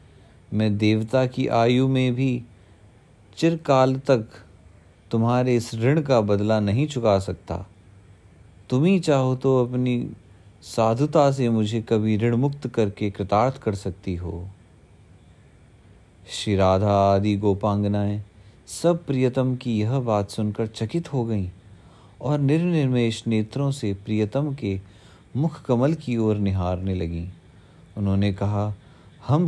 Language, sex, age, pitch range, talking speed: Hindi, male, 30-49, 100-125 Hz, 120 wpm